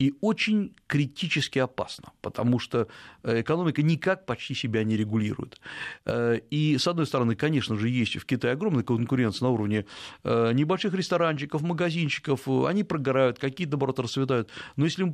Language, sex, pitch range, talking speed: Russian, male, 115-160 Hz, 145 wpm